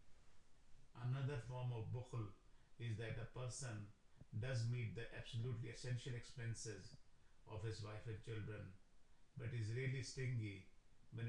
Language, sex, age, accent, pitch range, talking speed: English, male, 50-69, Indian, 105-125 Hz, 130 wpm